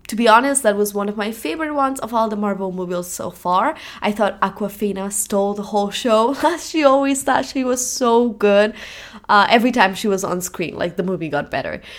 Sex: female